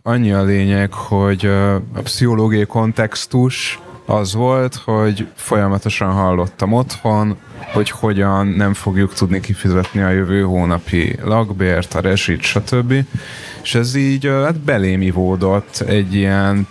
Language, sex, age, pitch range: Hungarian, male, 30-49, 95-115 Hz